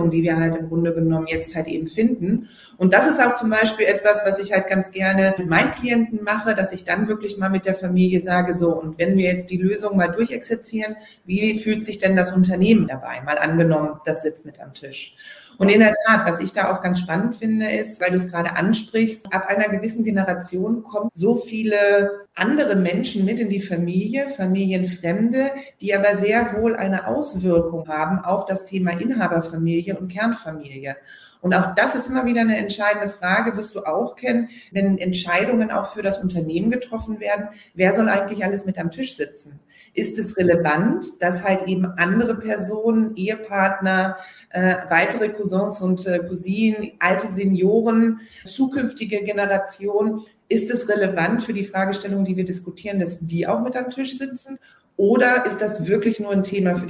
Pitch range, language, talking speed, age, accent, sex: 180-220 Hz, German, 180 wpm, 30-49, German, female